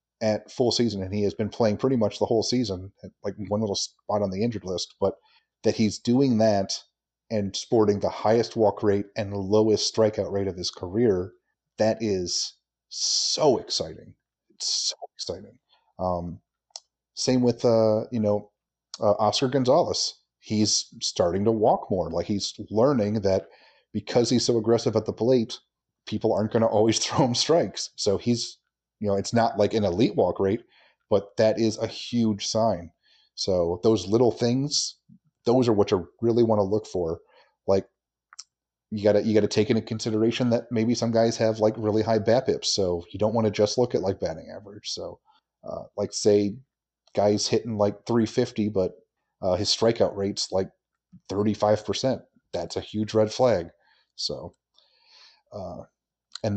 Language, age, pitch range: English, 30-49, 105-120 Hz